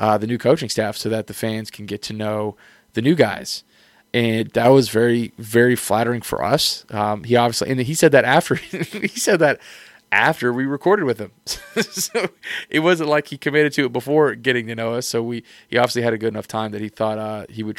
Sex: male